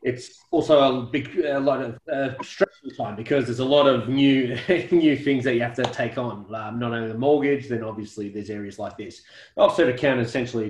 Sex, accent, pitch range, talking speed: male, Australian, 110-130 Hz, 220 wpm